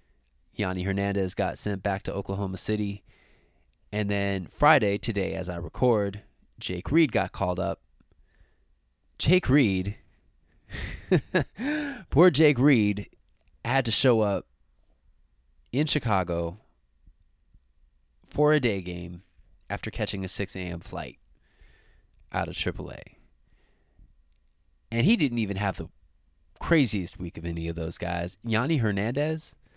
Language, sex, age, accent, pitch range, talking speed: English, male, 20-39, American, 85-110 Hz, 120 wpm